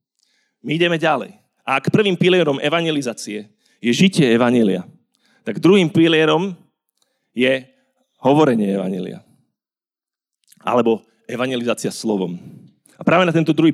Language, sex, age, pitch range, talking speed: Slovak, male, 40-59, 130-185 Hz, 110 wpm